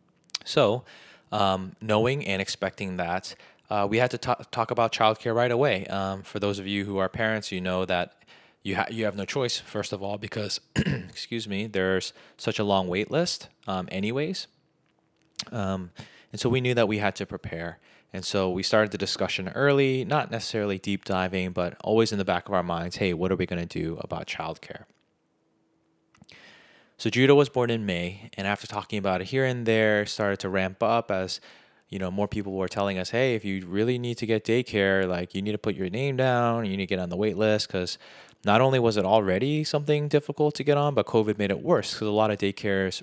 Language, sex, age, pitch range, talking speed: English, male, 20-39, 95-115 Hz, 220 wpm